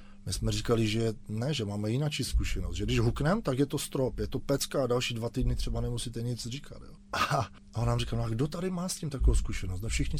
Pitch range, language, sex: 100-130 Hz, Czech, male